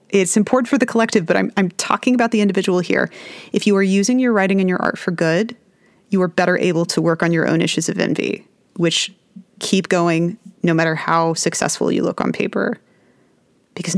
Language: English